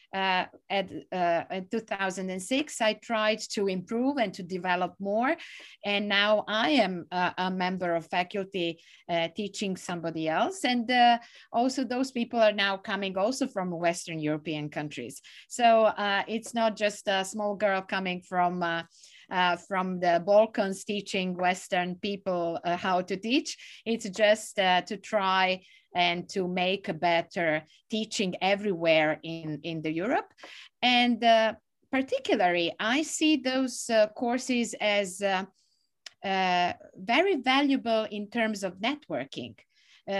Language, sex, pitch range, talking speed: English, female, 180-240 Hz, 140 wpm